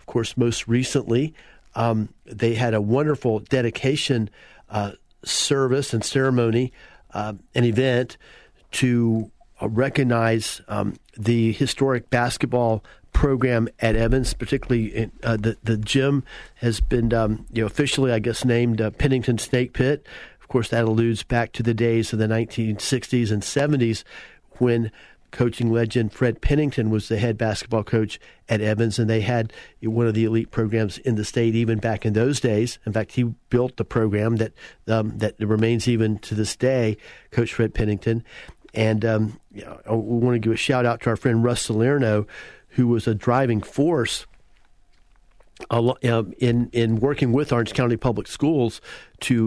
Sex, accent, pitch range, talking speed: male, American, 110-125 Hz, 165 wpm